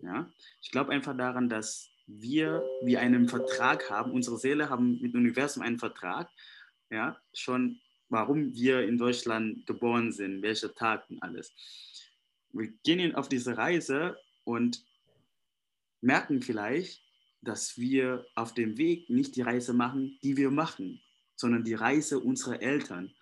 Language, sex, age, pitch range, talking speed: German, male, 20-39, 120-150 Hz, 145 wpm